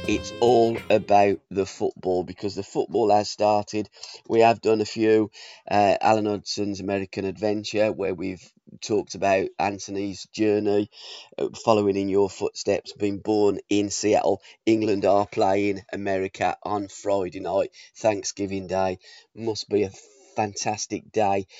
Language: English